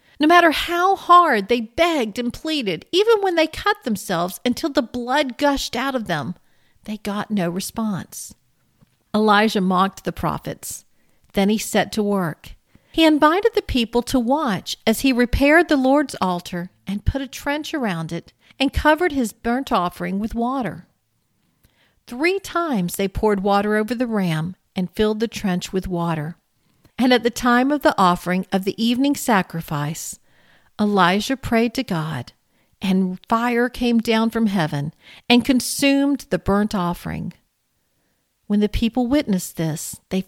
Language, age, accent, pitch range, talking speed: English, 50-69, American, 190-265 Hz, 155 wpm